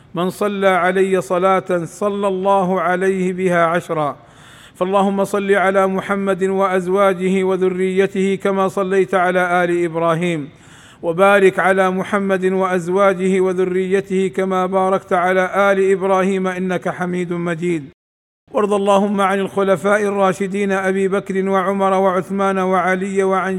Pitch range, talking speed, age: 175-195 Hz, 110 wpm, 50-69